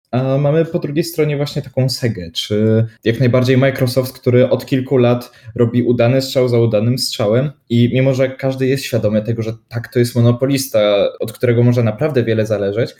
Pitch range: 120-150 Hz